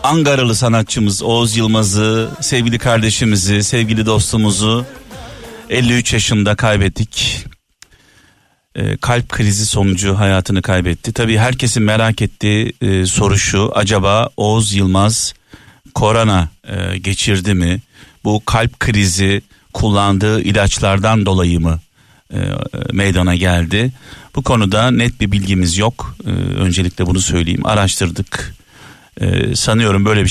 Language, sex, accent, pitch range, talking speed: Turkish, male, native, 95-115 Hz, 110 wpm